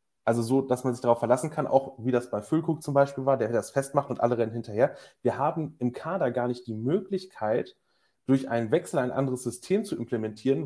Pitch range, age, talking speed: 120-140 Hz, 30-49, 220 wpm